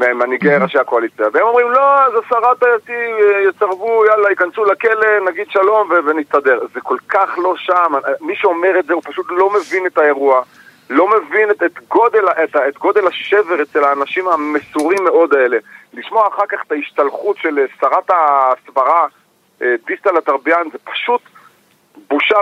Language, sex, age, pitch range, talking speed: Hebrew, male, 40-59, 165-220 Hz, 160 wpm